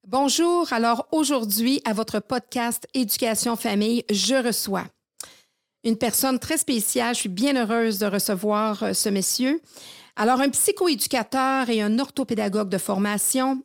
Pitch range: 215-265 Hz